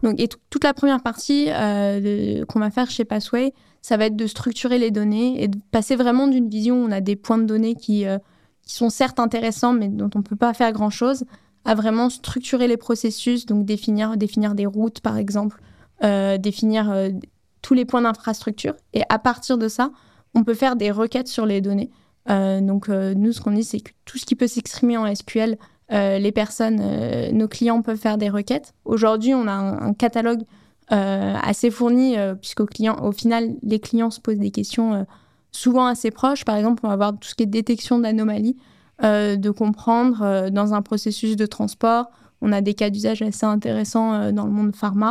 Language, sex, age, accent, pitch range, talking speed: French, female, 20-39, French, 210-235 Hz, 215 wpm